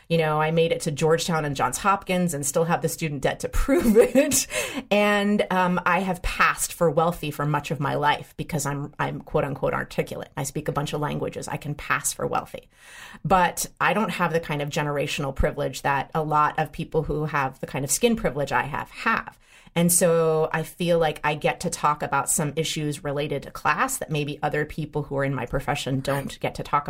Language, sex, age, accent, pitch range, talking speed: English, female, 30-49, American, 150-180 Hz, 225 wpm